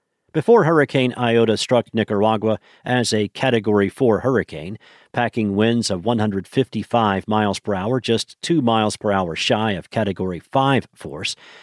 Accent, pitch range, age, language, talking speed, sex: American, 110-135 Hz, 50-69, English, 140 wpm, male